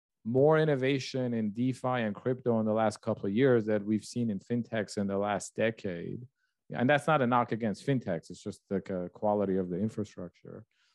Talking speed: 190 wpm